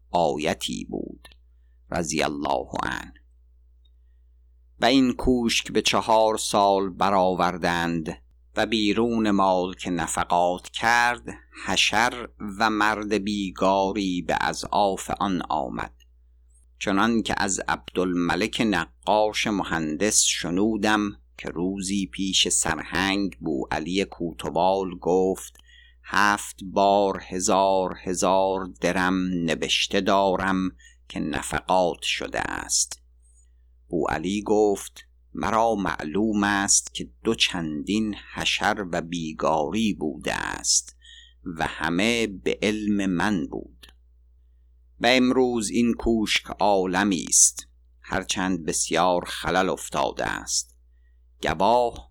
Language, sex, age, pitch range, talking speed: Persian, male, 50-69, 65-105 Hz, 95 wpm